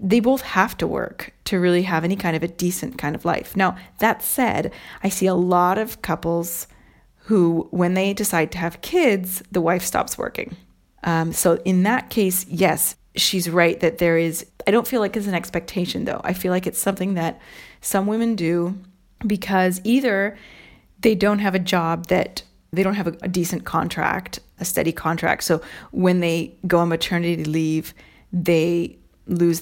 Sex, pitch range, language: female, 170-195 Hz, English